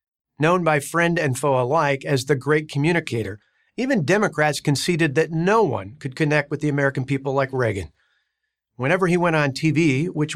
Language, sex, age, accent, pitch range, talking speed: English, male, 50-69, American, 140-170 Hz, 175 wpm